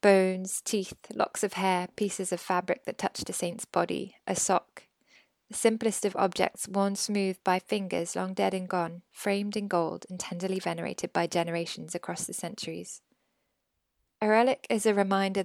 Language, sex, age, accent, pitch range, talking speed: English, female, 20-39, British, 175-205 Hz, 165 wpm